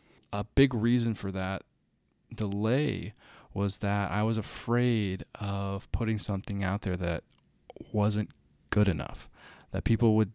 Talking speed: 135 wpm